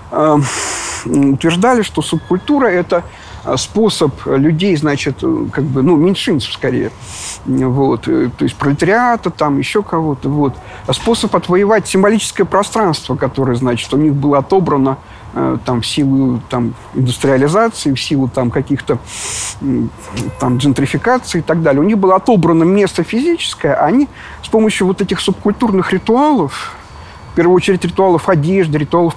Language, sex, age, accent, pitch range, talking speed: Russian, male, 50-69, native, 140-200 Hz, 130 wpm